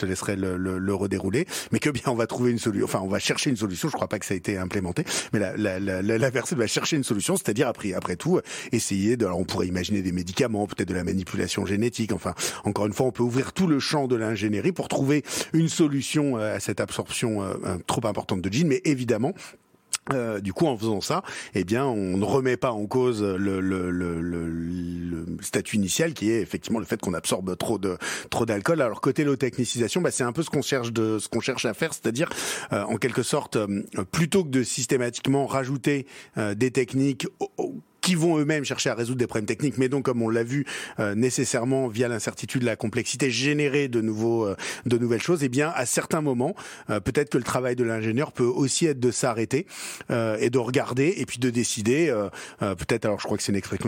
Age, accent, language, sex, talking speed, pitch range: 40-59, French, French, male, 235 wpm, 105-135 Hz